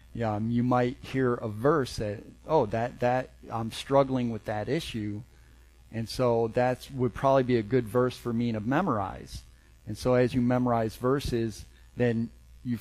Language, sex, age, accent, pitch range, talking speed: English, male, 40-59, American, 95-120 Hz, 170 wpm